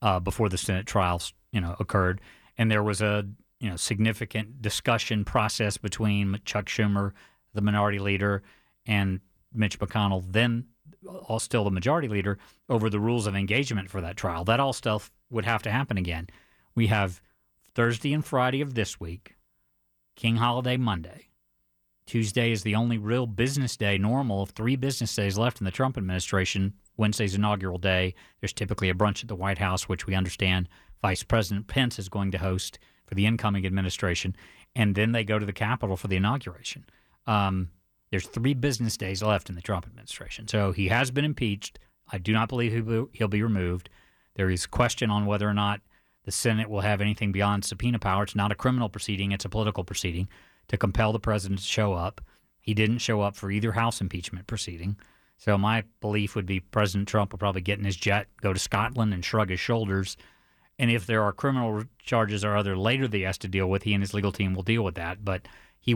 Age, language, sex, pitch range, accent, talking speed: 40-59, English, male, 95-115 Hz, American, 200 wpm